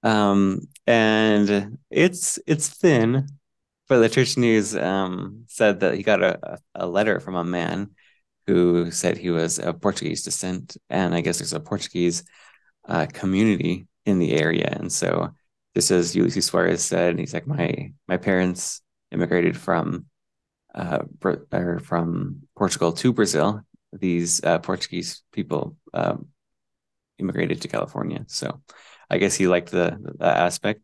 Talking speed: 145 wpm